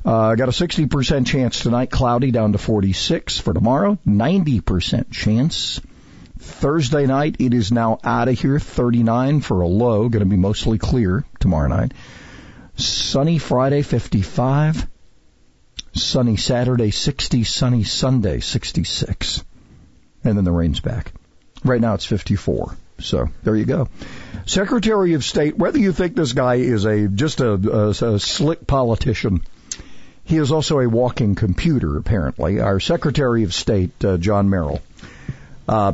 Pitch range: 100-130 Hz